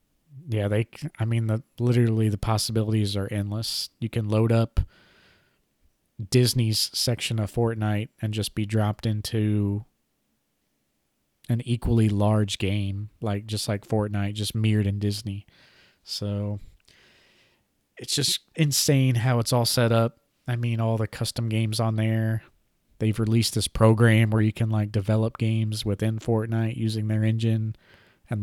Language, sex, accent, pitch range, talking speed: English, male, American, 105-115 Hz, 145 wpm